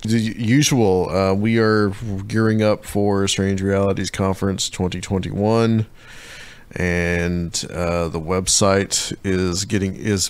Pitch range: 90-105 Hz